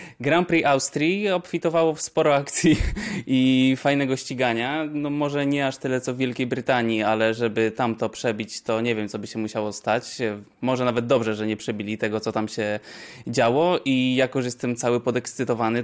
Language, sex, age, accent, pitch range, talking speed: Polish, male, 20-39, native, 115-140 Hz, 180 wpm